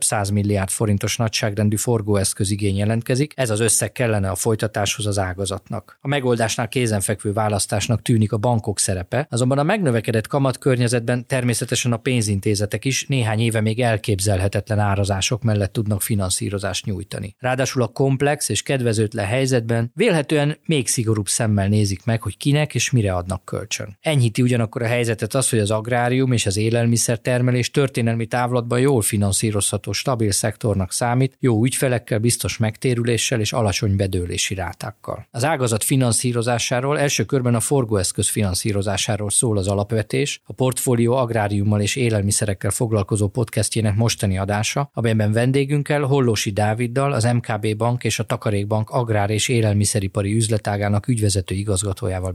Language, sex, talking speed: Hungarian, male, 140 wpm